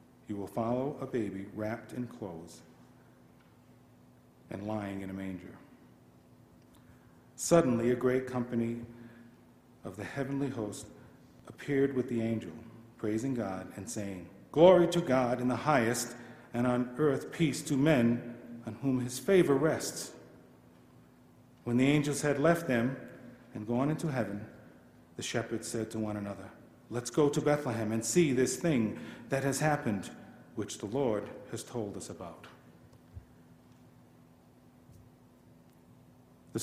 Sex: male